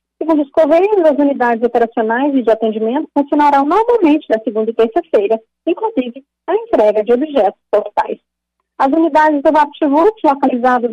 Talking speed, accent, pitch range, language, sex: 150 wpm, Brazilian, 225-310 Hz, Portuguese, female